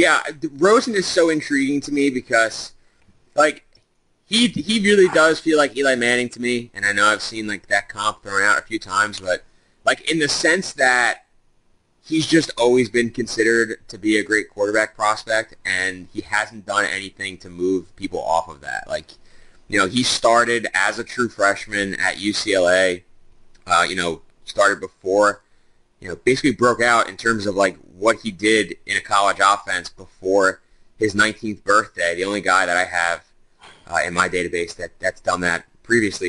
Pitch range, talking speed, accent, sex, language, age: 95-120 Hz, 185 wpm, American, male, English, 30-49